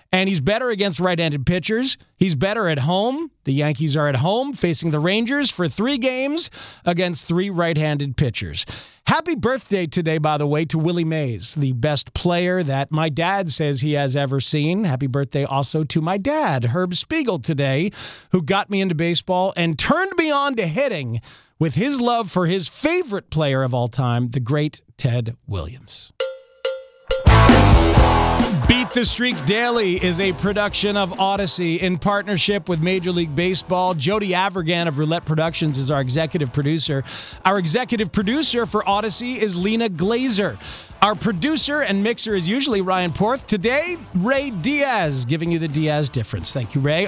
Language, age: English, 40-59